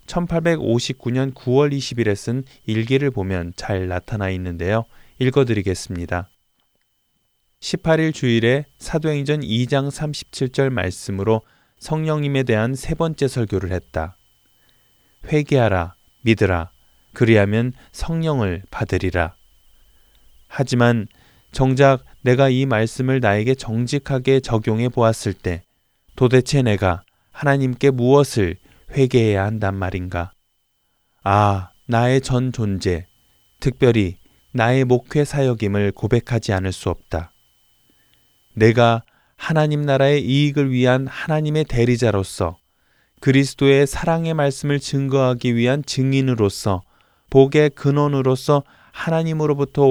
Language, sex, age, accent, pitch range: Korean, male, 20-39, native, 100-140 Hz